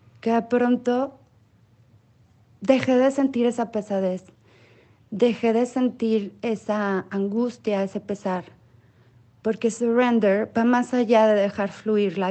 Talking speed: 115 wpm